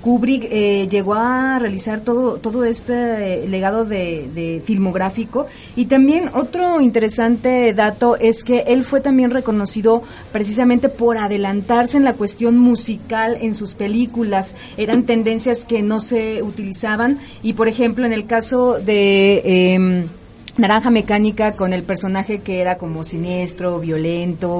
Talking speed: 140 wpm